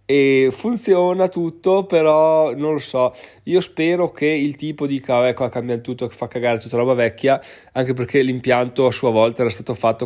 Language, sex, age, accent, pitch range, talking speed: Italian, male, 20-39, native, 120-150 Hz, 195 wpm